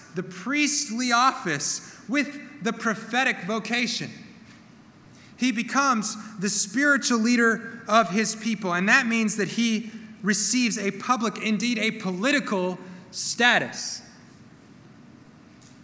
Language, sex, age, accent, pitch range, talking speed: English, male, 30-49, American, 185-230 Hz, 100 wpm